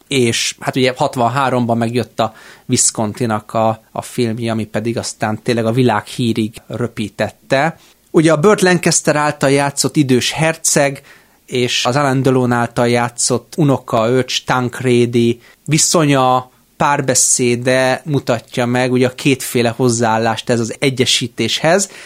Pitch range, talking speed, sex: 120-150 Hz, 120 wpm, male